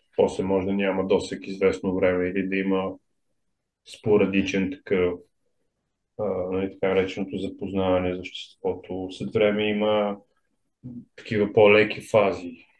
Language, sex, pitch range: Bulgarian, male, 95-105 Hz